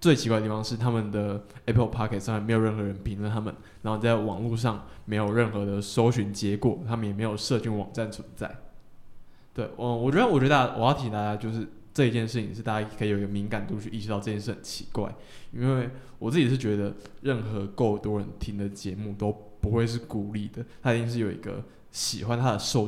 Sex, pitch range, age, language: male, 105-120 Hz, 20-39, Chinese